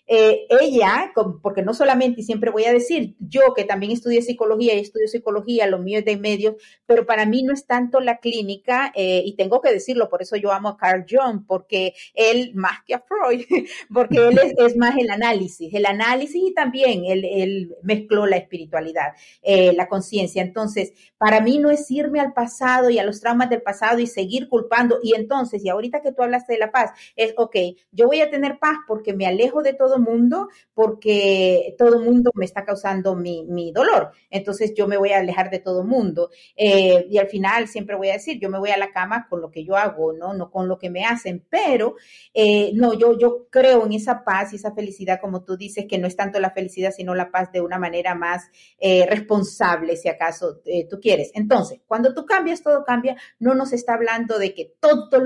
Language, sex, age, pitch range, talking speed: Spanish, female, 40-59, 190-245 Hz, 215 wpm